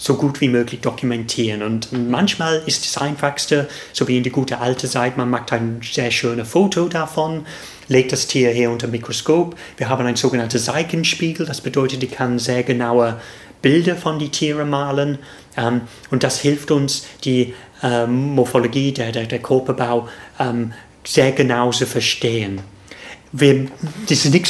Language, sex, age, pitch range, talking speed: German, male, 30-49, 125-150 Hz, 155 wpm